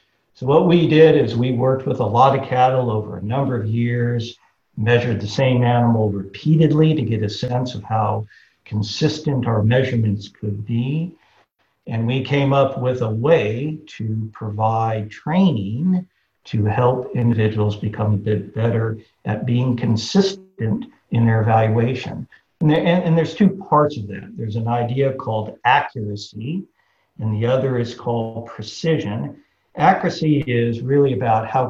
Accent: American